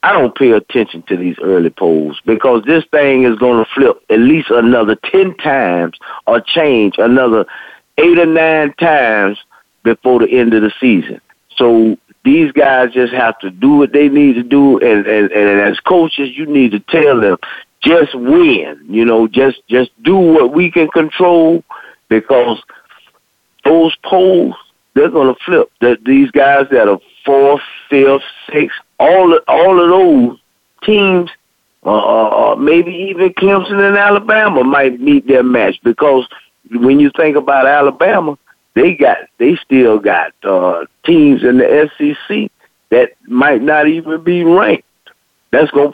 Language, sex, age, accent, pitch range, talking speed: English, male, 50-69, American, 125-175 Hz, 160 wpm